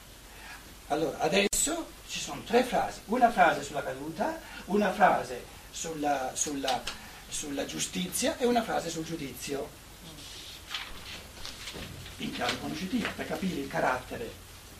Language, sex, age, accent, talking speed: Italian, male, 60-79, native, 115 wpm